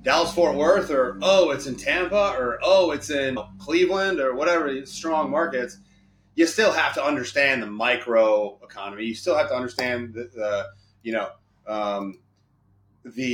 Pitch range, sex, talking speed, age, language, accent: 110-165 Hz, male, 160 wpm, 30-49, English, American